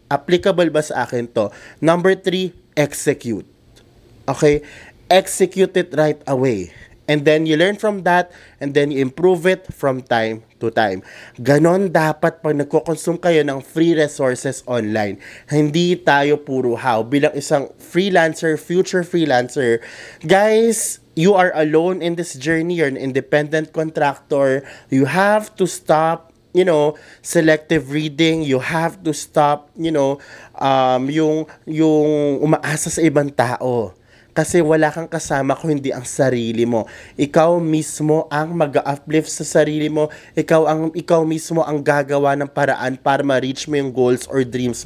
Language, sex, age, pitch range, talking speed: Filipino, male, 20-39, 130-160 Hz, 145 wpm